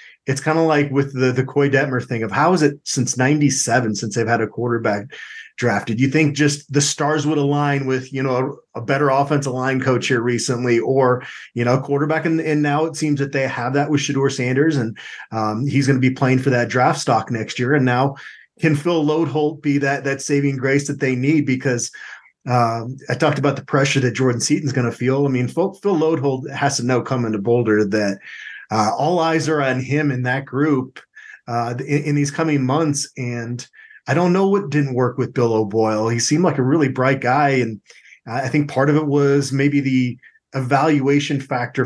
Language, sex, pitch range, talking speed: English, male, 125-145 Hz, 220 wpm